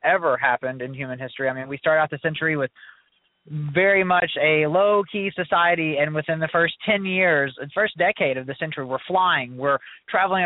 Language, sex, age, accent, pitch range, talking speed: English, male, 20-39, American, 140-180 Hz, 195 wpm